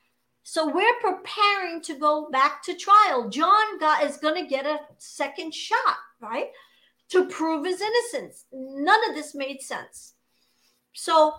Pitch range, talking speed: 245-335 Hz, 140 wpm